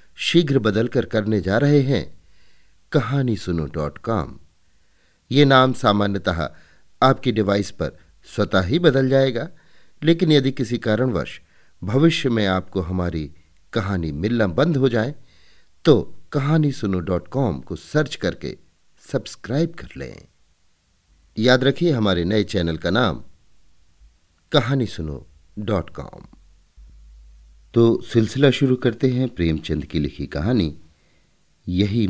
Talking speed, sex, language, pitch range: 110 wpm, male, Hindi, 80-125 Hz